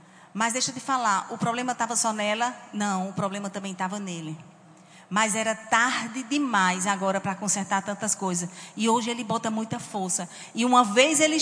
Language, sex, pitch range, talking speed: Portuguese, female, 205-260 Hz, 180 wpm